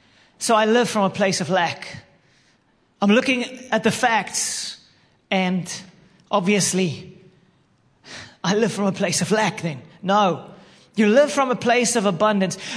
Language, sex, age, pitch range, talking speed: English, male, 30-49, 195-250 Hz, 145 wpm